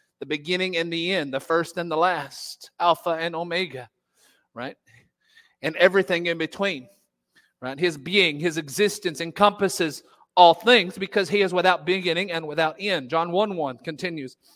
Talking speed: 155 wpm